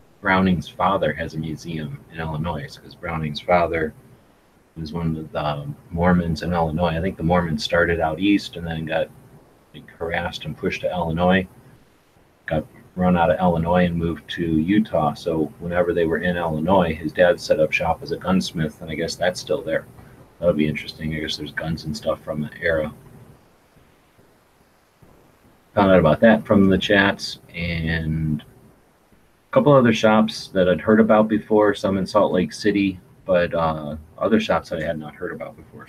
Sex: male